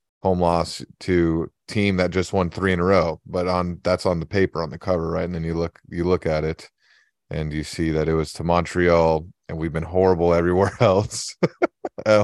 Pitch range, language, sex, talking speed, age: 80-95 Hz, English, male, 215 wpm, 30-49